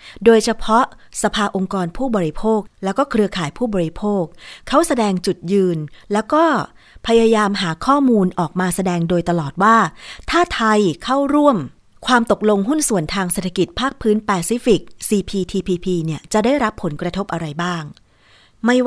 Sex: female